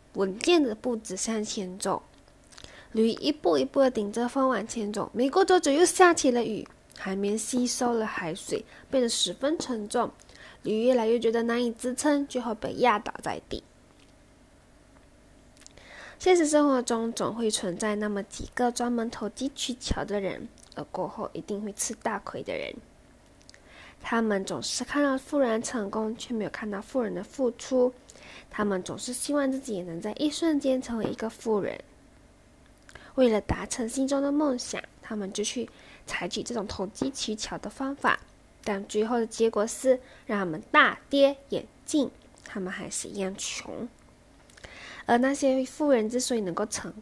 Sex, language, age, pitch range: female, Chinese, 10-29, 210-270 Hz